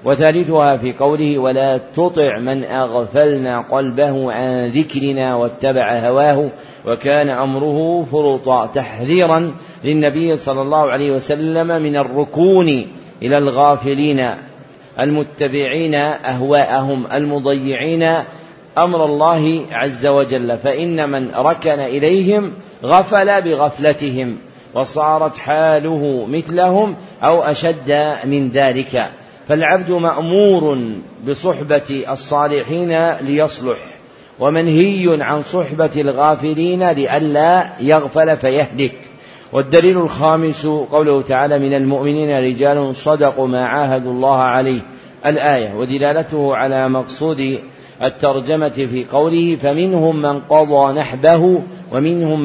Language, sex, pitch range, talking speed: Arabic, male, 135-160 Hz, 95 wpm